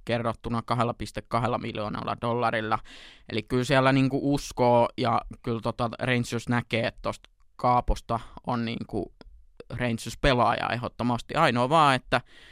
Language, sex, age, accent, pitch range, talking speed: Finnish, male, 20-39, native, 115-130 Hz, 120 wpm